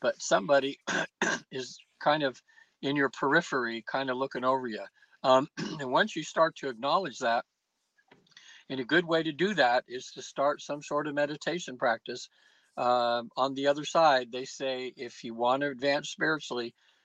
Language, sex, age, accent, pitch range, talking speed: English, male, 60-79, American, 125-155 Hz, 170 wpm